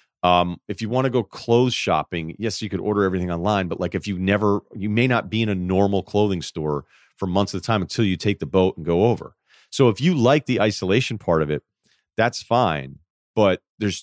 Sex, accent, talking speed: male, American, 230 wpm